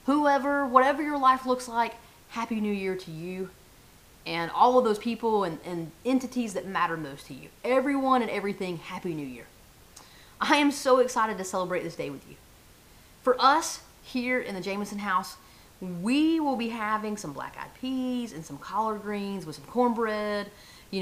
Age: 30-49